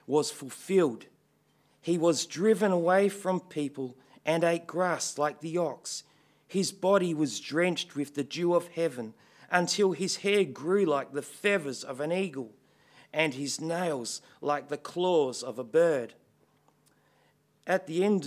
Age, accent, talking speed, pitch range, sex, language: 40-59, Australian, 150 wpm, 140-175 Hz, male, English